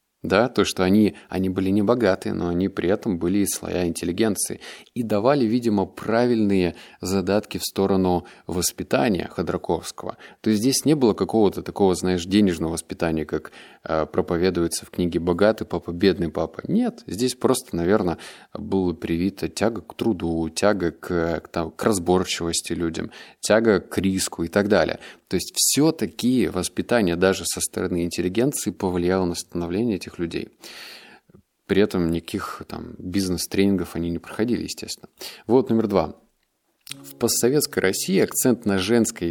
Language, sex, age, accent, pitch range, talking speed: Russian, male, 20-39, native, 85-105 Hz, 145 wpm